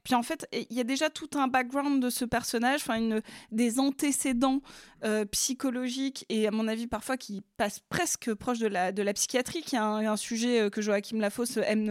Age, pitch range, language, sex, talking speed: 20-39, 220-265 Hz, French, female, 210 wpm